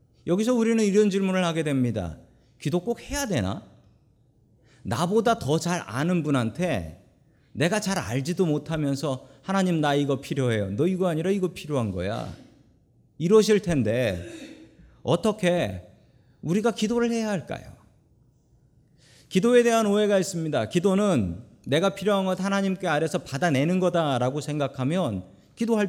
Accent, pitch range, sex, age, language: native, 125-190 Hz, male, 40-59, Korean